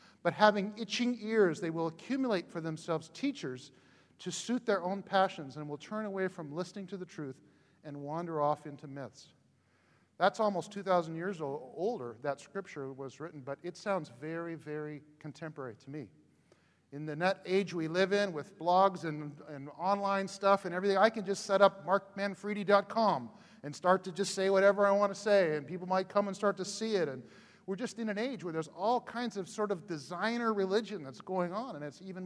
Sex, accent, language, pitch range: male, American, English, 160-210 Hz